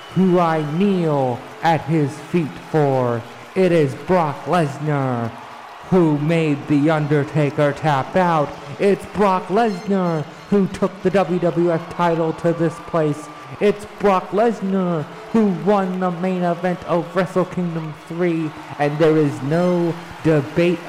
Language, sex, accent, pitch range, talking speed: English, male, American, 145-180 Hz, 130 wpm